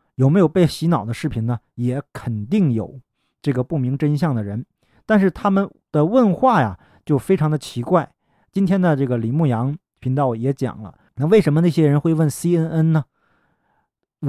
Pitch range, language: 120-160 Hz, Chinese